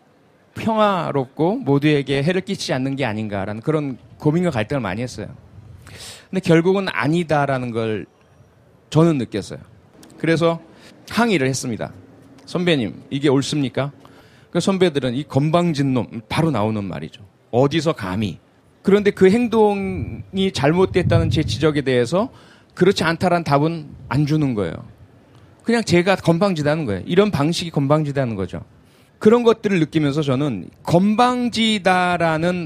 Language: Korean